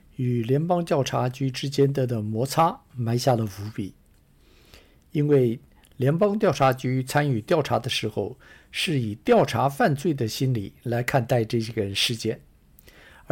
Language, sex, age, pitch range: Chinese, male, 60-79, 120-160 Hz